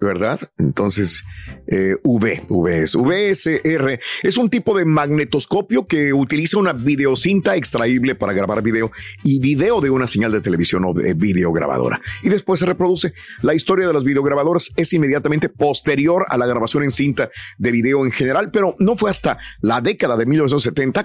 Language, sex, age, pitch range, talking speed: Spanish, male, 50-69, 115-165 Hz, 170 wpm